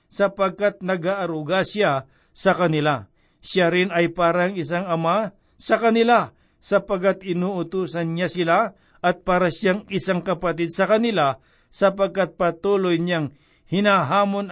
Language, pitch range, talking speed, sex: Filipino, 165-200 Hz, 115 wpm, male